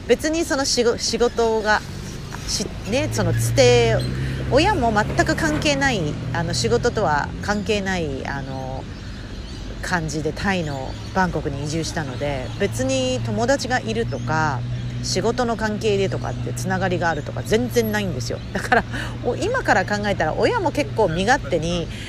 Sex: female